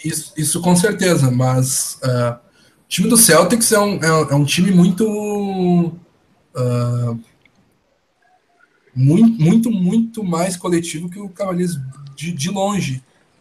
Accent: Brazilian